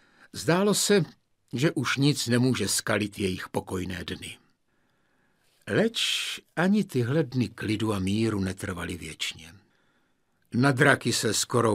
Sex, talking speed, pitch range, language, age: male, 115 wpm, 105-125 Hz, Czech, 60-79